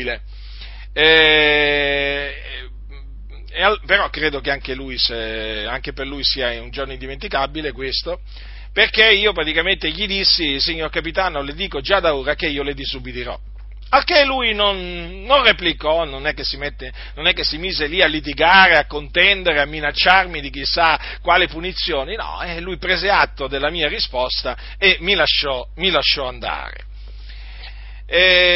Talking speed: 145 wpm